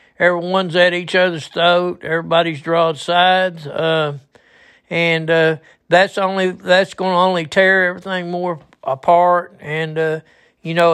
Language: English